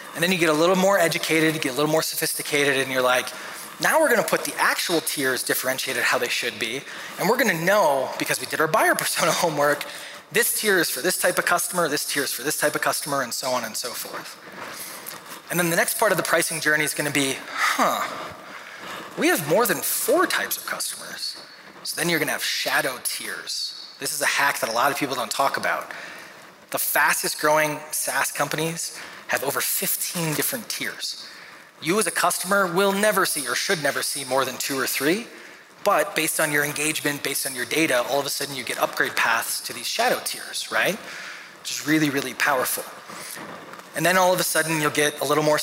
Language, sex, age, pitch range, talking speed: English, male, 20-39, 140-170 Hz, 220 wpm